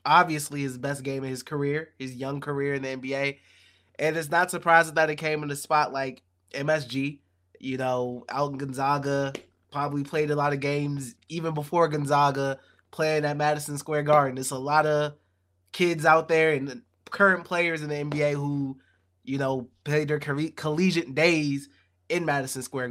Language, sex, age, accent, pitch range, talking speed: English, male, 20-39, American, 130-160 Hz, 175 wpm